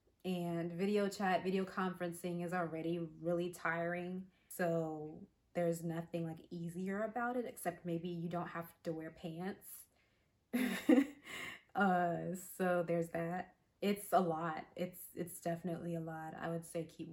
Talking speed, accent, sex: 140 wpm, American, female